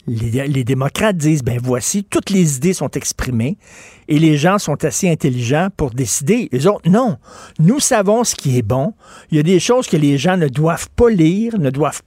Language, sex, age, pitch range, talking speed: French, male, 50-69, 135-185 Hz, 210 wpm